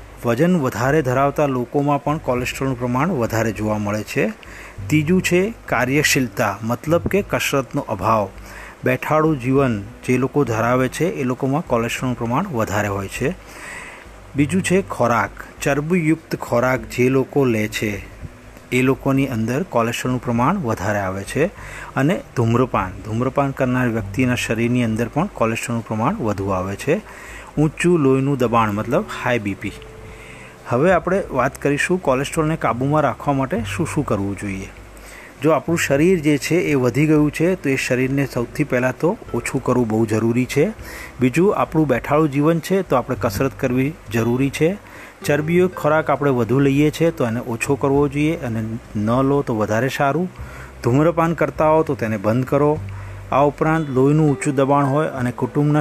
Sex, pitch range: male, 115-150 Hz